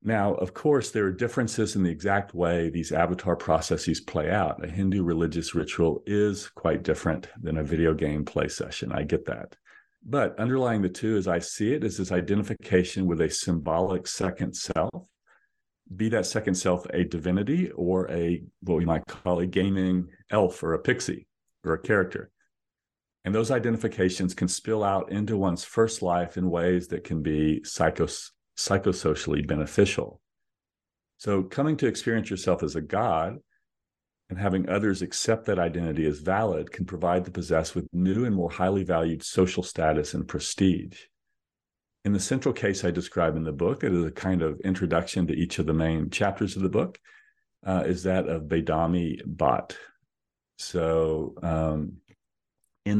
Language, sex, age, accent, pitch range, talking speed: English, male, 50-69, American, 85-100 Hz, 170 wpm